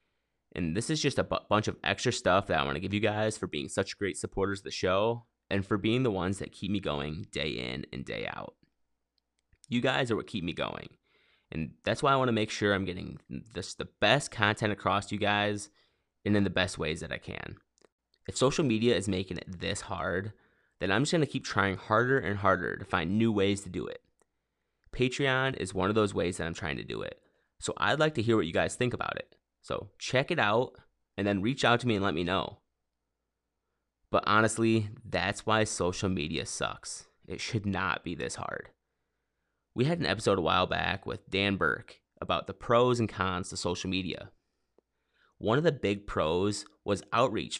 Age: 20-39